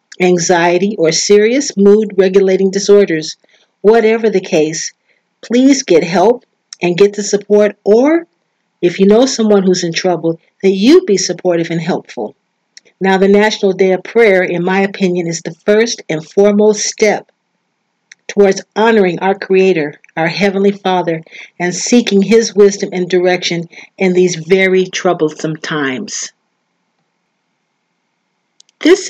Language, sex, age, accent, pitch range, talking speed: English, female, 50-69, American, 180-215 Hz, 130 wpm